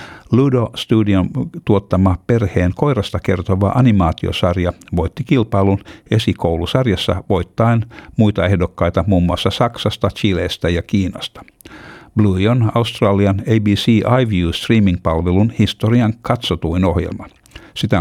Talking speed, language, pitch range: 95 wpm, Finnish, 90-110 Hz